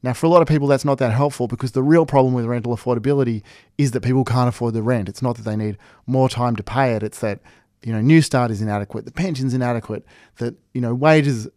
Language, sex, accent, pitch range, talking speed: English, male, Australian, 115-140 Hz, 255 wpm